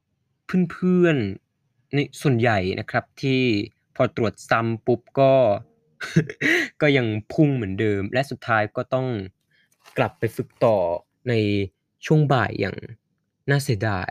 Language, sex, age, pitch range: Thai, male, 20-39, 115-150 Hz